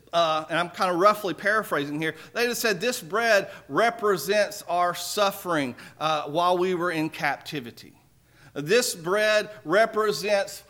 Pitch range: 160-200 Hz